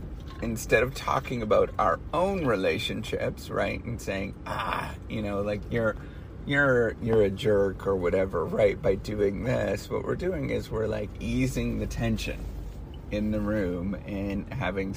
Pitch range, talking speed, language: 75-105 Hz, 155 wpm, English